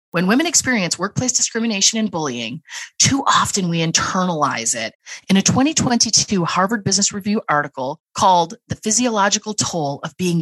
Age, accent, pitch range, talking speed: 30-49, American, 160-205 Hz, 145 wpm